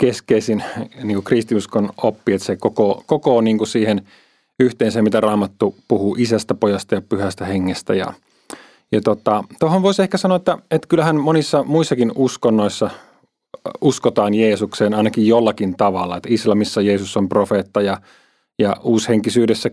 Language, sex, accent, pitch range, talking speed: Finnish, male, native, 105-125 Hz, 120 wpm